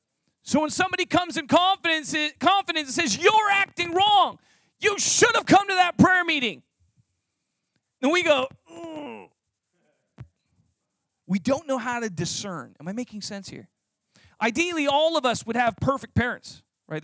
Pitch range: 260-350 Hz